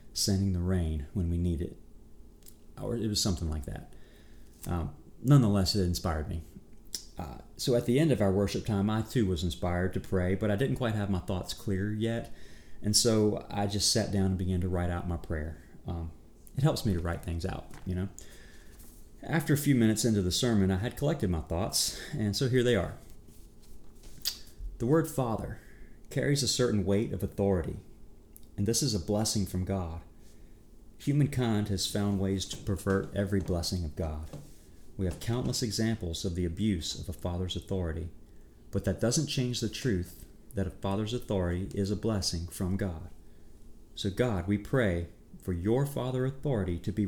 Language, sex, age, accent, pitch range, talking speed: English, male, 30-49, American, 85-115 Hz, 185 wpm